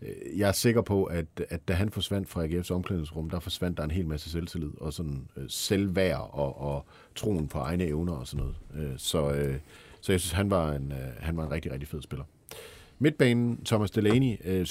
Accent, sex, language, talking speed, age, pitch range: native, male, Danish, 220 wpm, 50-69, 80-100 Hz